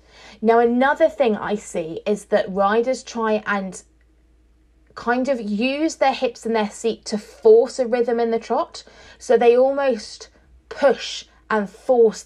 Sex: female